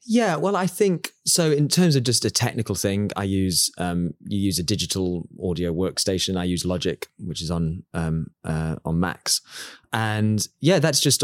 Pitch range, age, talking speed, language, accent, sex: 95-125 Hz, 20-39, 185 wpm, English, British, male